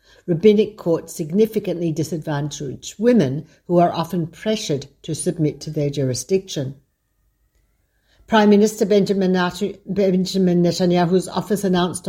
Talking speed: 100 wpm